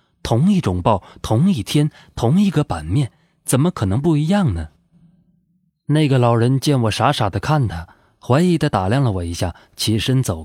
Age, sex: 20-39, male